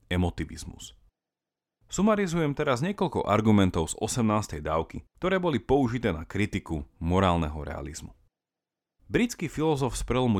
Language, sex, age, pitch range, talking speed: Slovak, male, 30-49, 90-130 Hz, 110 wpm